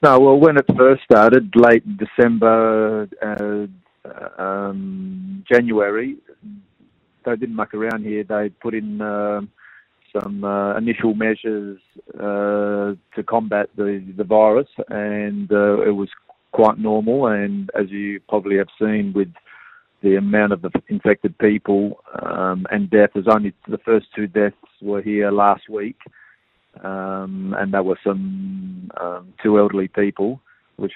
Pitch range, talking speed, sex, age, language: 100-115 Hz, 140 wpm, male, 40-59, English